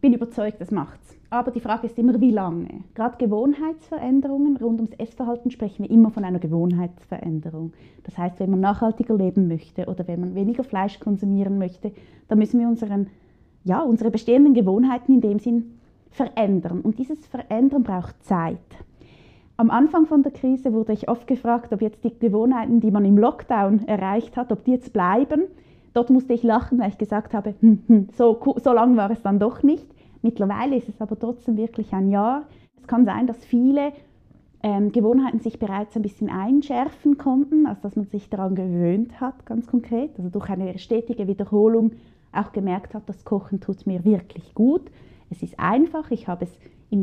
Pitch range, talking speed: 200-250 Hz, 185 wpm